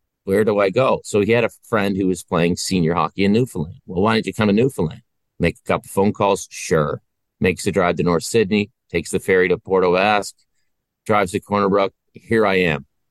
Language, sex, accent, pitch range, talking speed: English, male, American, 90-110 Hz, 210 wpm